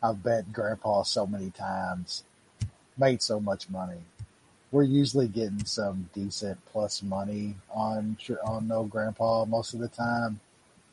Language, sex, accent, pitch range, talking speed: English, male, American, 100-120 Hz, 135 wpm